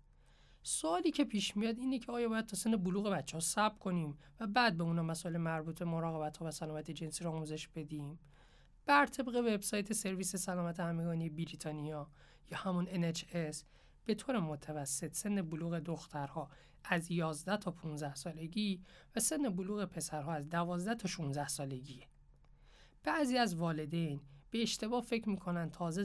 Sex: male